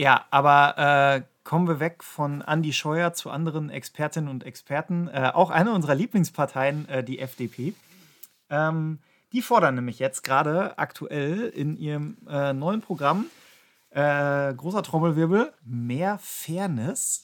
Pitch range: 135-180 Hz